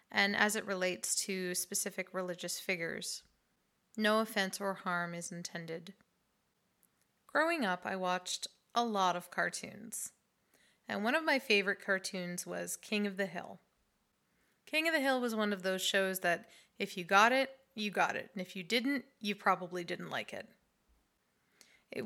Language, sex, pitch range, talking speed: English, female, 180-220 Hz, 165 wpm